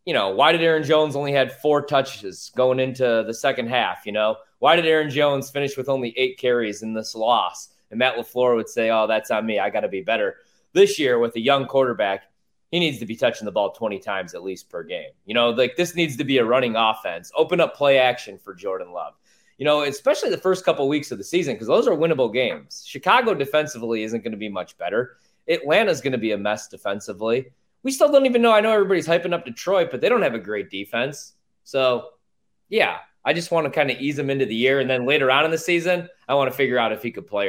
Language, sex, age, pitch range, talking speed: English, male, 20-39, 120-165 Hz, 250 wpm